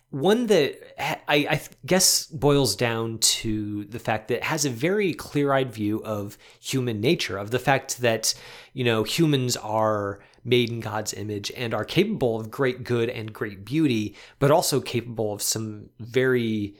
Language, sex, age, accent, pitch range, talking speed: English, male, 30-49, American, 110-135 Hz, 170 wpm